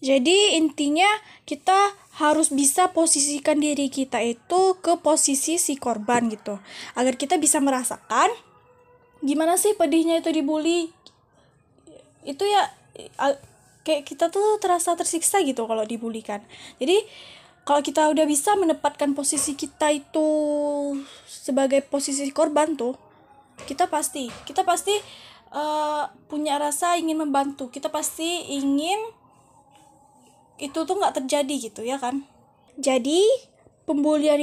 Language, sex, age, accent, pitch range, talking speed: Indonesian, female, 20-39, native, 280-340 Hz, 115 wpm